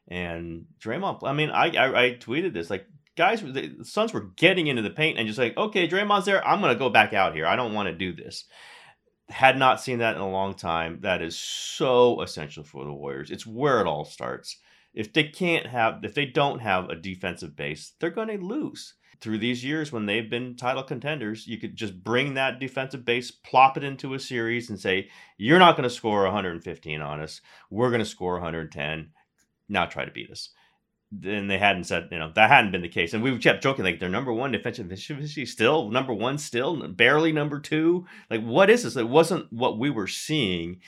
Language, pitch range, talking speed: English, 90-130 Hz, 220 wpm